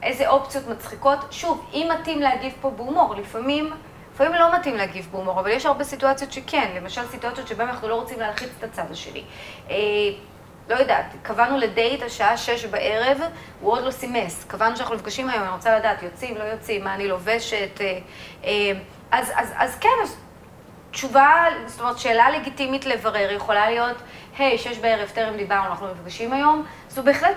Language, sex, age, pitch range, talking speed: Hebrew, female, 30-49, 210-275 Hz, 180 wpm